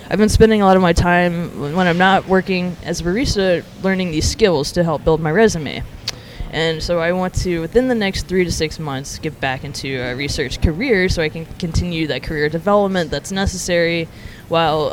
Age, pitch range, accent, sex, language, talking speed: 20-39, 155-185 Hz, American, female, English, 205 wpm